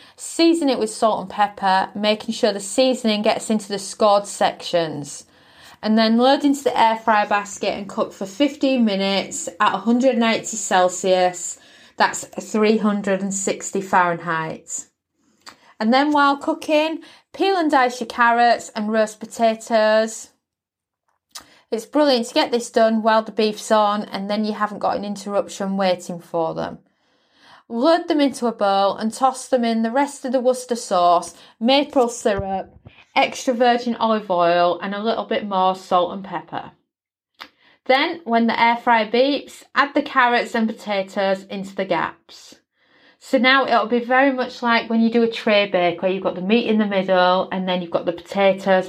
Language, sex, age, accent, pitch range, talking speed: English, female, 30-49, British, 195-255 Hz, 170 wpm